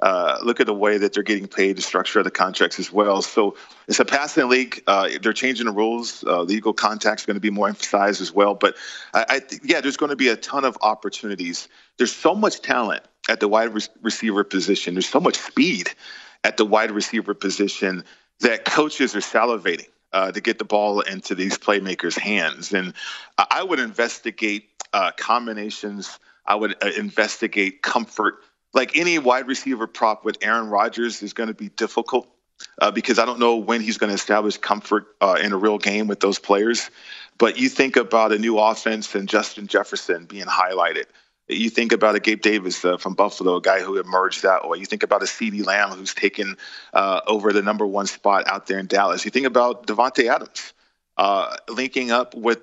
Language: English